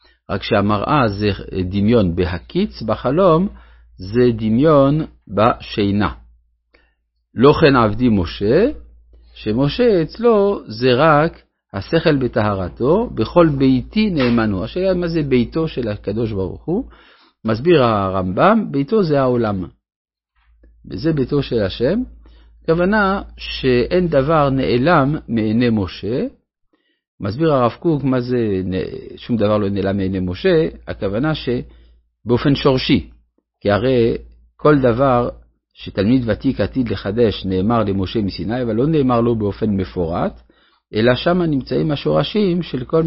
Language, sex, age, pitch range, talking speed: Hebrew, male, 50-69, 95-145 Hz, 115 wpm